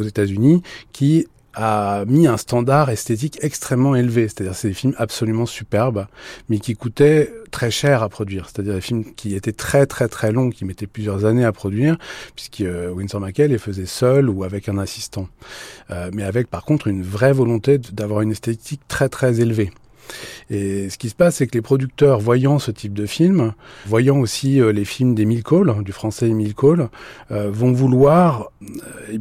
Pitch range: 105-135 Hz